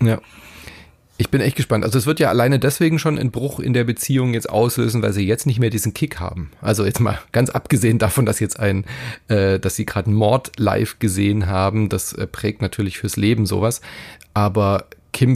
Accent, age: German, 30-49